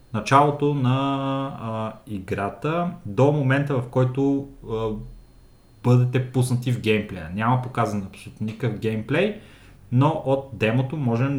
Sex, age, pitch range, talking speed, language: male, 30-49, 110-135 Hz, 110 wpm, Bulgarian